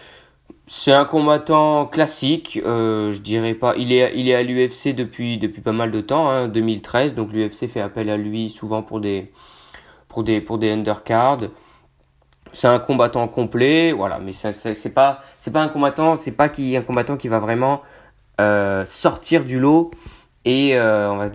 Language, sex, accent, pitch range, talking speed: French, male, French, 105-135 Hz, 185 wpm